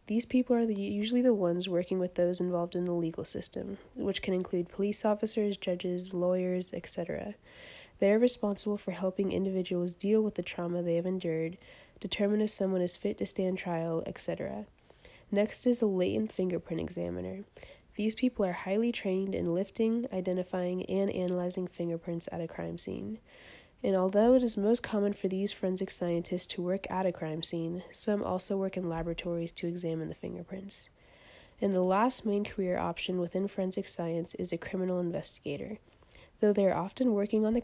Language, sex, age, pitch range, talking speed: English, female, 20-39, 175-205 Hz, 175 wpm